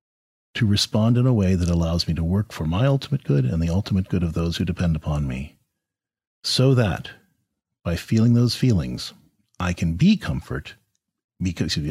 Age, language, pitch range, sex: 40-59, English, 90-135 Hz, male